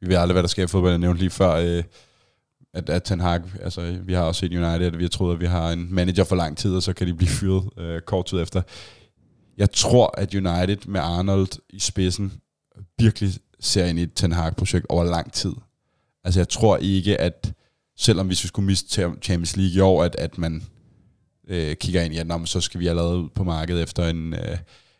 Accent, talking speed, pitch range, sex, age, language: native, 220 wpm, 85-100 Hz, male, 20-39, Danish